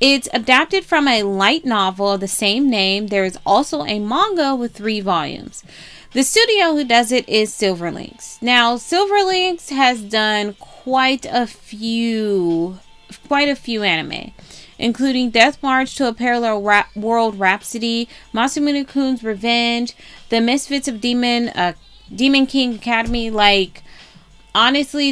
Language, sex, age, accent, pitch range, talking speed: English, female, 20-39, American, 205-270 Hz, 140 wpm